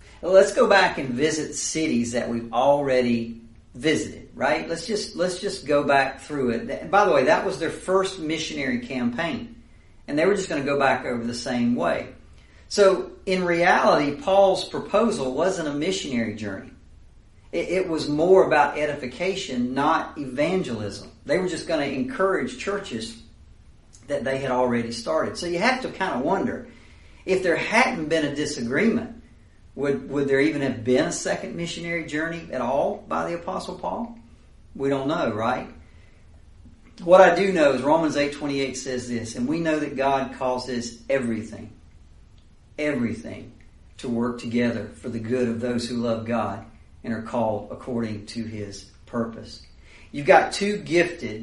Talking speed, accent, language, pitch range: 165 wpm, American, English, 115-165 Hz